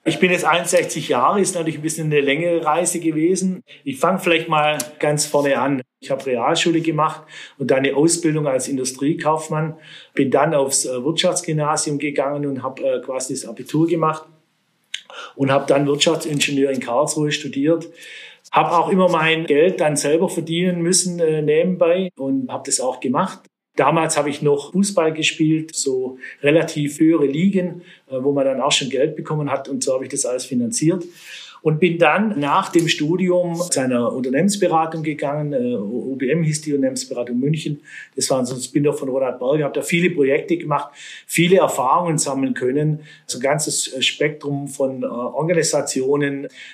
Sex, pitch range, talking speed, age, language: male, 140-165 Hz, 165 wpm, 40-59, German